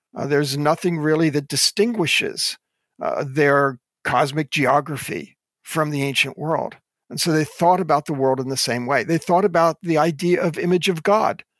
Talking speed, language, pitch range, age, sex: 175 wpm, English, 145-190 Hz, 50-69, male